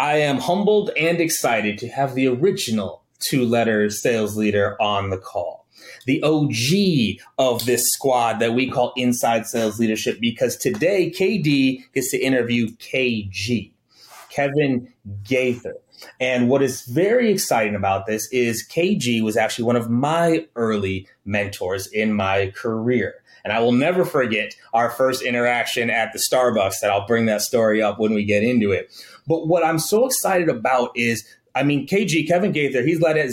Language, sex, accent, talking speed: English, male, American, 165 wpm